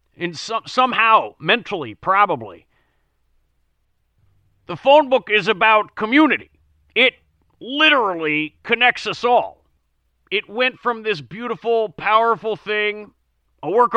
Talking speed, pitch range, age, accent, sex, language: 105 wpm, 150-220 Hz, 40-59, American, male, English